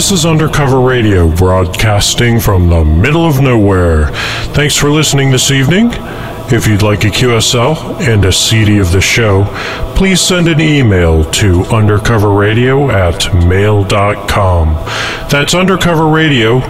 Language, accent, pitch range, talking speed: English, American, 95-135 Hz, 135 wpm